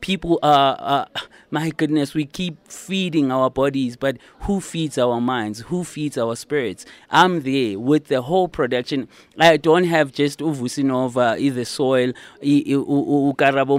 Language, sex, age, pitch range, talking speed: English, male, 20-39, 130-155 Hz, 145 wpm